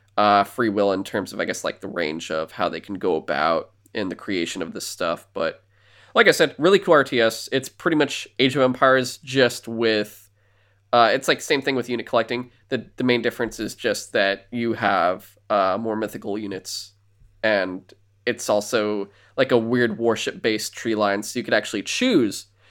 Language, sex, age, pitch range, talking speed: English, male, 20-39, 100-115 Hz, 195 wpm